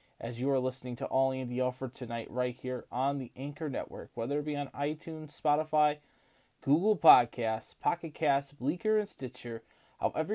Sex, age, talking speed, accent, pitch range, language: male, 20-39, 175 wpm, American, 125-145 Hz, English